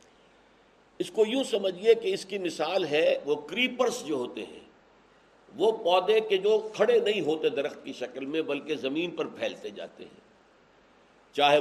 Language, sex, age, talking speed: Urdu, male, 60-79, 165 wpm